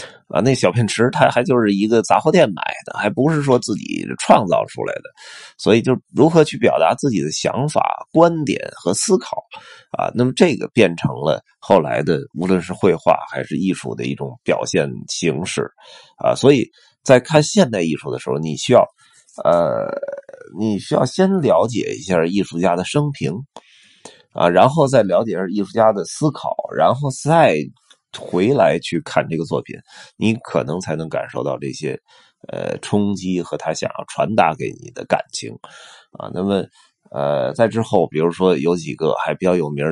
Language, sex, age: Chinese, male, 30-49